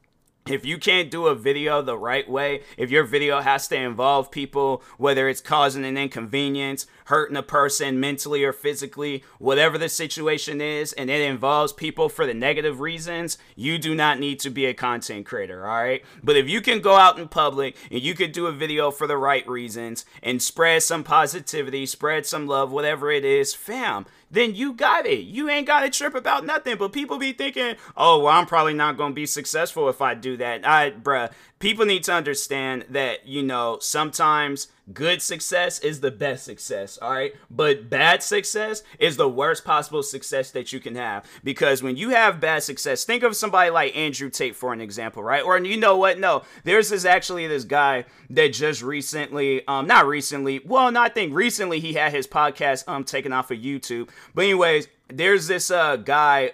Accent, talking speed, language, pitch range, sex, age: American, 200 wpm, English, 135-185 Hz, male, 30-49